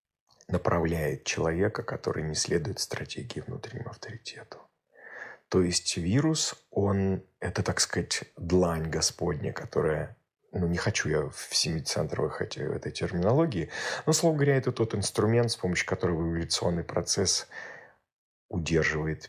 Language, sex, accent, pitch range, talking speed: Russian, male, native, 80-110 Hz, 125 wpm